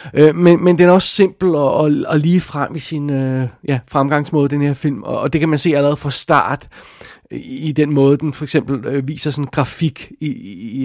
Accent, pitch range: native, 130-150 Hz